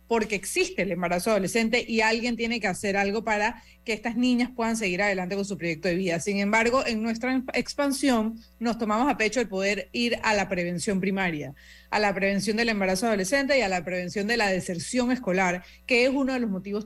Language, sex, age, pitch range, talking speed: Spanish, female, 30-49, 190-240 Hz, 210 wpm